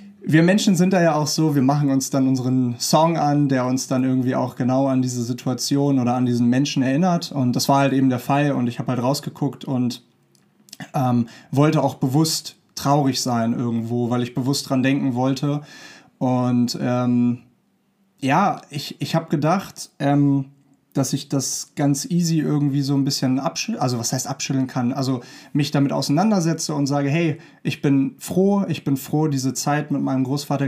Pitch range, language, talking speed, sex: 130-150 Hz, German, 180 wpm, male